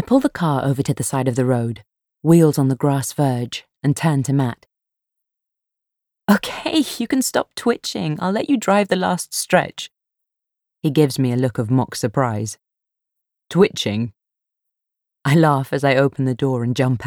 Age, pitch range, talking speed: 30-49, 130-165 Hz, 175 wpm